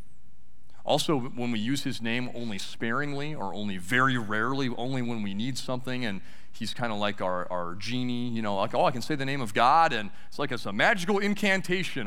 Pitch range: 95-140 Hz